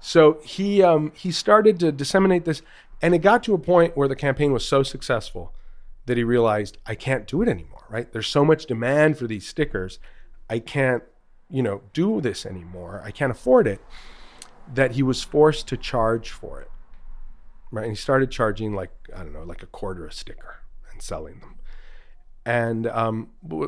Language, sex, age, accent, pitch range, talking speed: English, male, 40-59, American, 100-145 Hz, 190 wpm